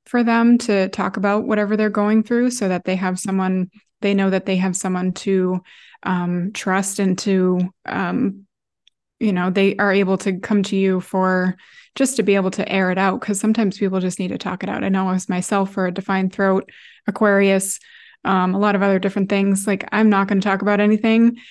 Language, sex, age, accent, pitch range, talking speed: English, female, 20-39, American, 195-215 Hz, 215 wpm